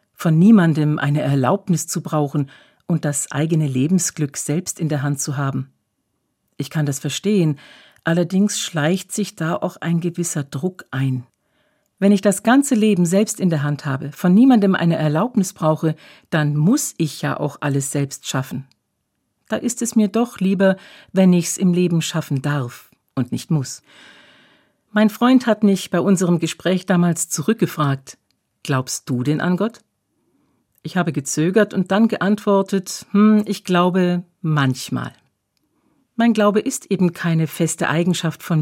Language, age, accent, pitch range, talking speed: German, 50-69, German, 150-200 Hz, 155 wpm